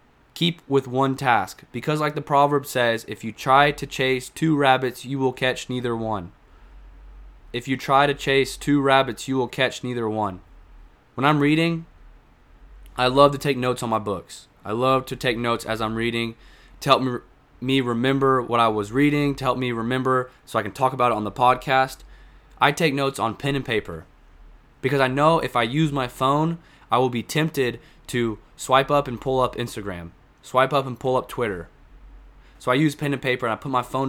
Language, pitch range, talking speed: English, 115-135 Hz, 205 wpm